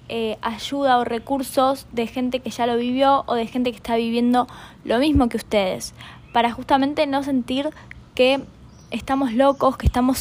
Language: Spanish